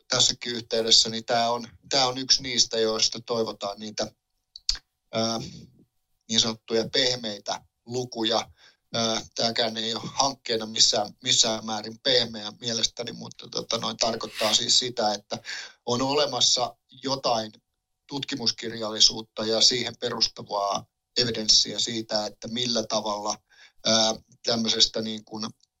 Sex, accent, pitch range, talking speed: male, native, 110-120 Hz, 115 wpm